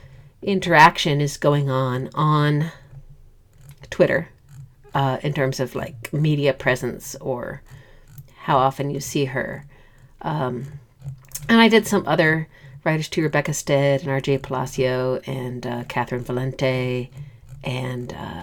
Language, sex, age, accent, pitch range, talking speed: English, female, 50-69, American, 130-155 Hz, 120 wpm